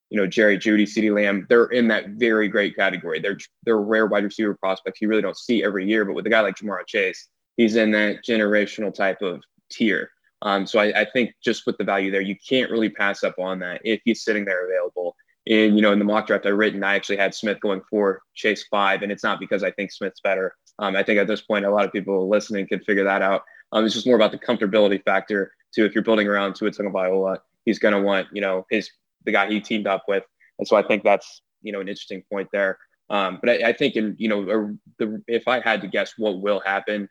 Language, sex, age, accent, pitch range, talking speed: English, male, 20-39, American, 100-110 Hz, 250 wpm